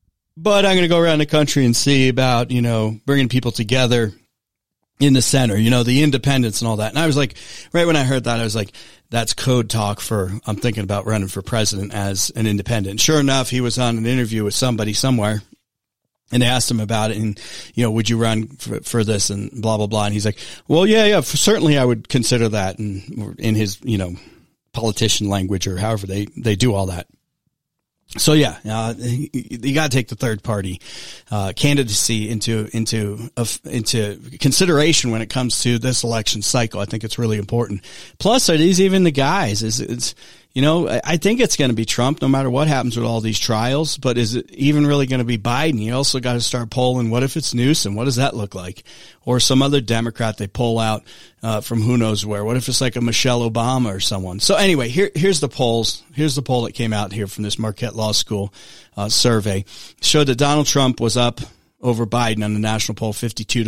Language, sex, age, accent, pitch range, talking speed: English, male, 40-59, American, 110-135 Hz, 225 wpm